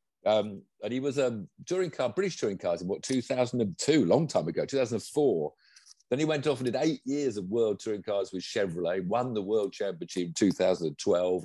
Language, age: English, 50-69